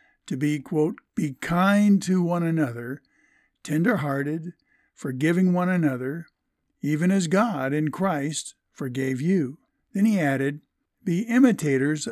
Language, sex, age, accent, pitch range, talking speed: English, male, 60-79, American, 140-190 Hz, 125 wpm